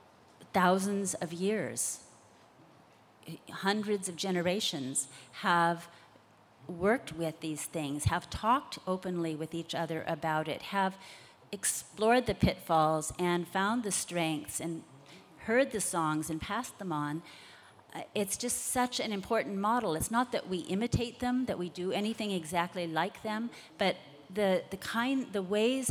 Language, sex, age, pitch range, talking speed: English, female, 40-59, 165-200 Hz, 140 wpm